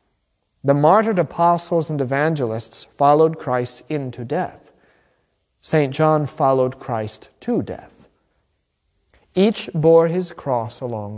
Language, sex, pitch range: English, male, 115-170 Hz